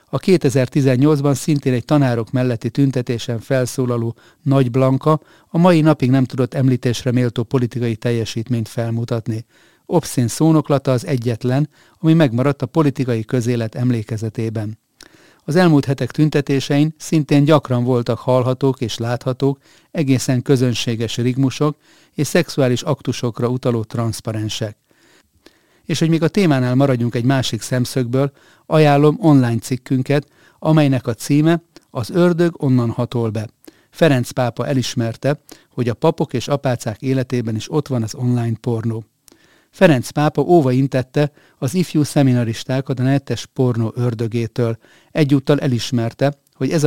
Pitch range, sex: 120-145 Hz, male